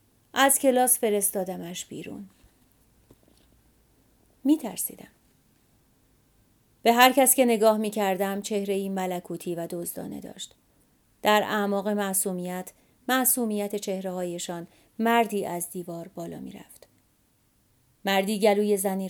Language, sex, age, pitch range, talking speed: English, female, 30-49, 140-230 Hz, 100 wpm